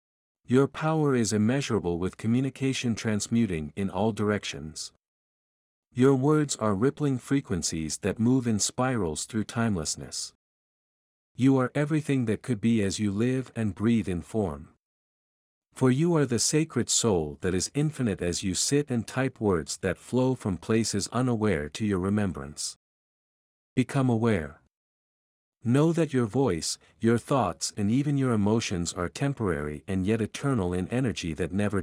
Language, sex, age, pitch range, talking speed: English, male, 50-69, 85-130 Hz, 145 wpm